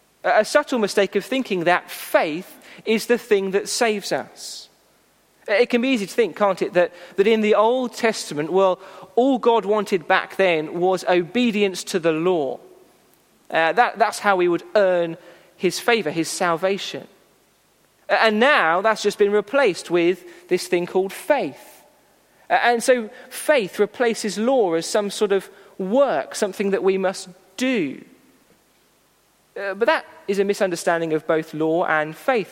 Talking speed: 155 wpm